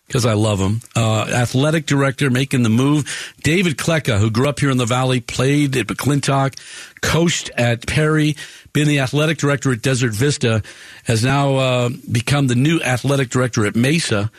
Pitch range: 115-145 Hz